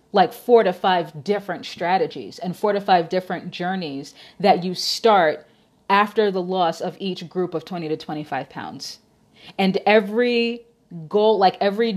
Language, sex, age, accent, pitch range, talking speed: English, female, 30-49, American, 175-210 Hz, 155 wpm